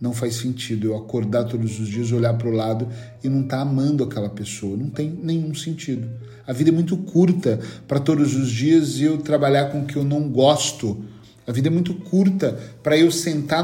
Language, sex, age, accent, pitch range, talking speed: Portuguese, male, 40-59, Brazilian, 120-165 Hz, 205 wpm